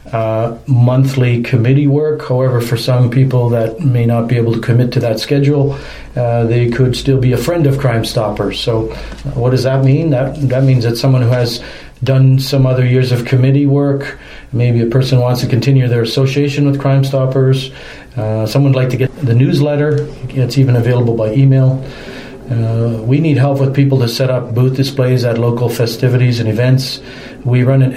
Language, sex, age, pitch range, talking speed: English, male, 40-59, 120-135 Hz, 190 wpm